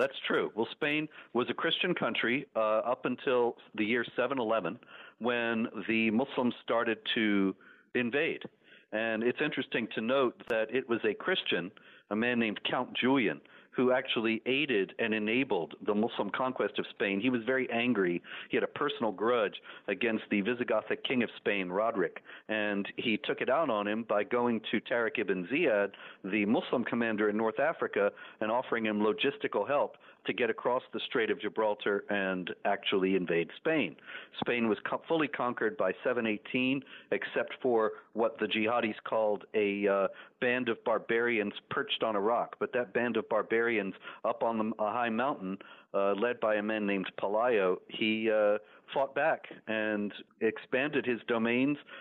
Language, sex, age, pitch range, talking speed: English, male, 50-69, 105-120 Hz, 165 wpm